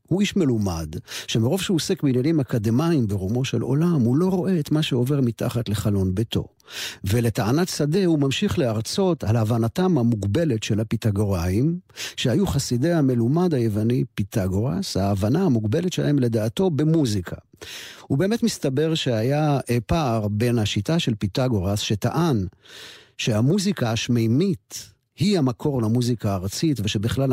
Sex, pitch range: male, 105-140 Hz